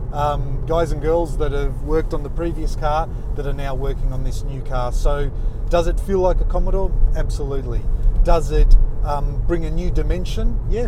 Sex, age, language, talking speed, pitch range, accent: male, 30-49, English, 195 wpm, 115-155 Hz, Australian